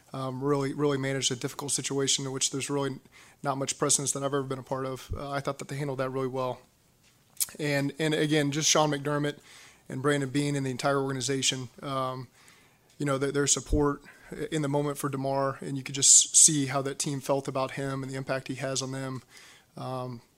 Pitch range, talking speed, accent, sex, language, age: 135-150 Hz, 215 wpm, American, male, English, 30-49